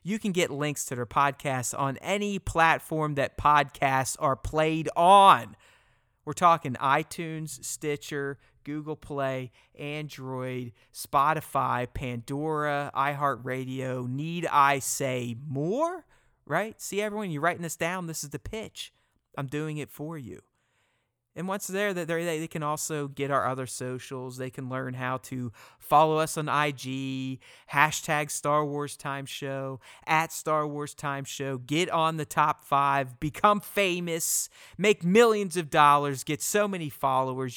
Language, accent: English, American